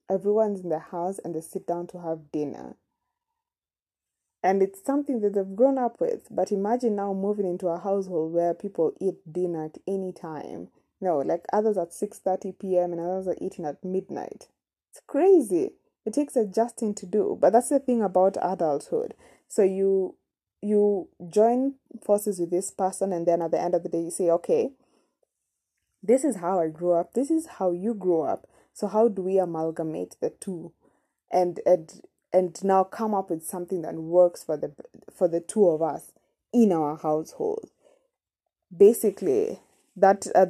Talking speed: 175 wpm